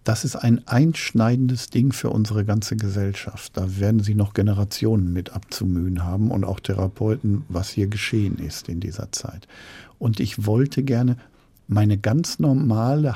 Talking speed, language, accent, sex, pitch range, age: 155 wpm, German, German, male, 105-145 Hz, 50-69